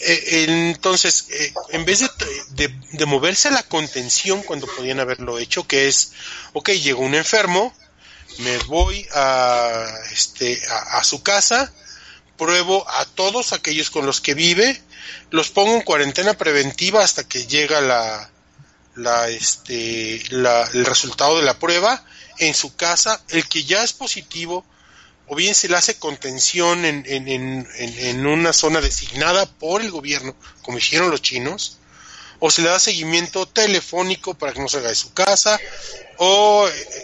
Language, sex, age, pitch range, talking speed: Spanish, male, 30-49, 135-190 Hz, 150 wpm